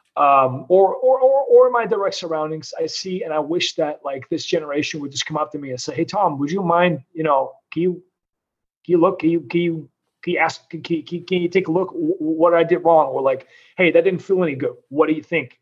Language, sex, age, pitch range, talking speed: English, male, 30-49, 150-180 Hz, 260 wpm